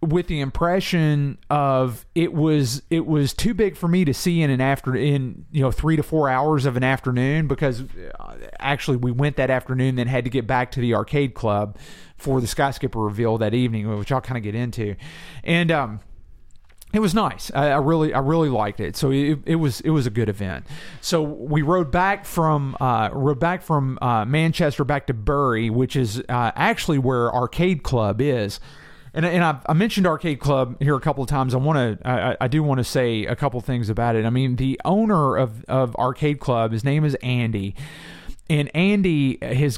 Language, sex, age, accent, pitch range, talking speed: English, male, 40-59, American, 120-155 Hz, 210 wpm